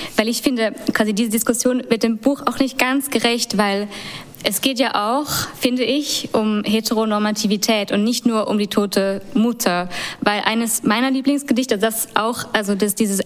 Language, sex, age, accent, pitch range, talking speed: German, female, 20-39, German, 195-230 Hz, 170 wpm